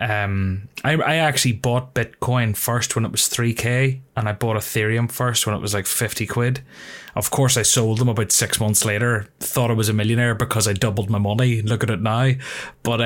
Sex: male